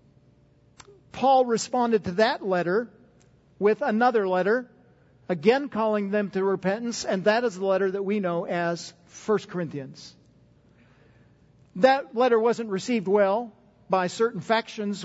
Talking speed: 130 wpm